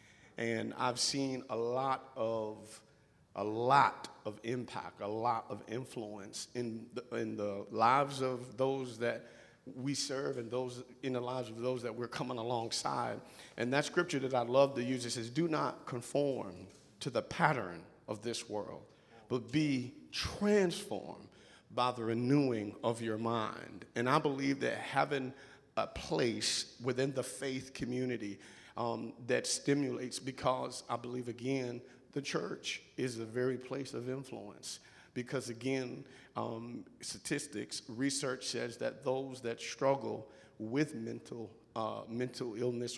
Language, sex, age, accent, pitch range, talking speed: English, male, 50-69, American, 115-135 Hz, 145 wpm